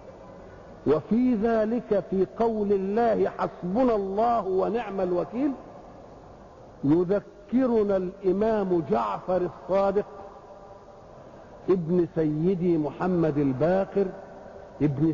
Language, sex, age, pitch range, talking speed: Arabic, male, 50-69, 185-230 Hz, 70 wpm